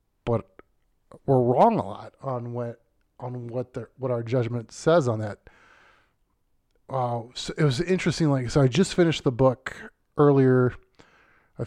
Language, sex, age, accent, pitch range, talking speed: English, male, 30-49, American, 115-140 Hz, 150 wpm